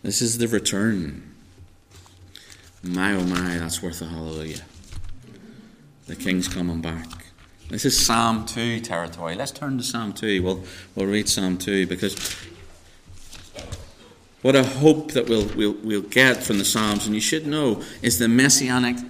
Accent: British